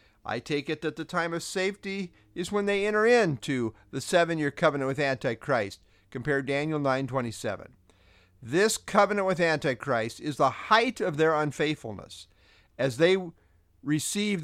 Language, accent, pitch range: English, American, 130-205 Hz